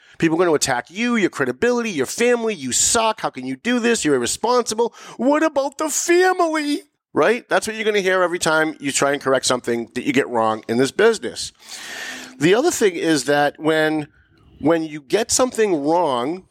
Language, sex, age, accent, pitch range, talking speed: English, male, 40-59, American, 125-185 Hz, 200 wpm